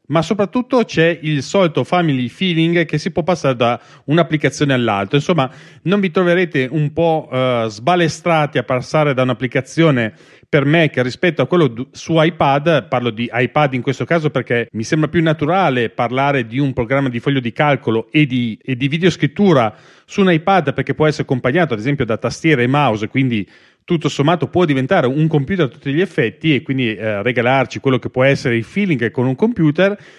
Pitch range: 125-170 Hz